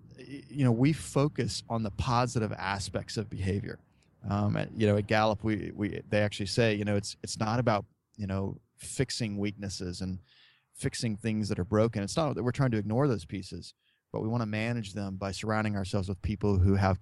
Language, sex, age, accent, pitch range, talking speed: English, male, 30-49, American, 100-125 Hz, 205 wpm